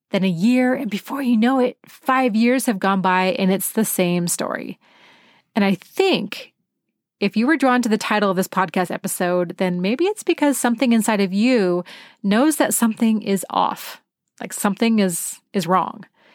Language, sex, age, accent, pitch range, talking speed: English, female, 30-49, American, 190-235 Hz, 185 wpm